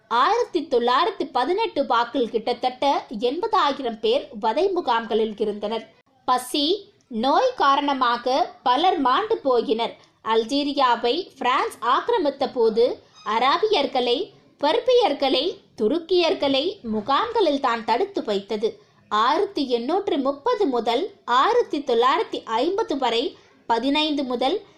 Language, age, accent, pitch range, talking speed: Tamil, 20-39, native, 240-380 Hz, 45 wpm